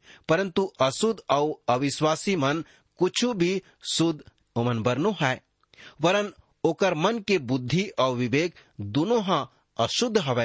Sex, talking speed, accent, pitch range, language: male, 125 wpm, Indian, 125-180 Hz, English